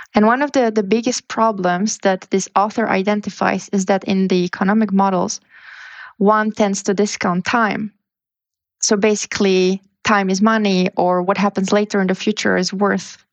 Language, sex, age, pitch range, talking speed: English, female, 20-39, 195-220 Hz, 160 wpm